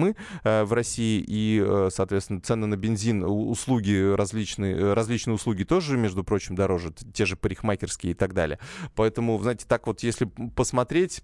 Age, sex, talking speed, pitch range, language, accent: 20-39, male, 145 wpm, 95-120 Hz, Russian, native